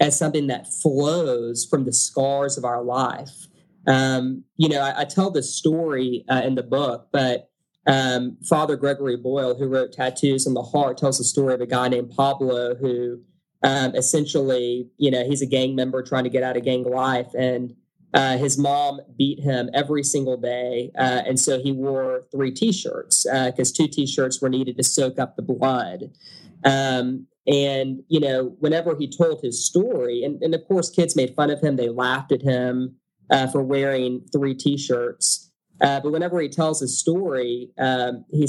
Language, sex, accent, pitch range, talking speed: English, male, American, 125-150 Hz, 185 wpm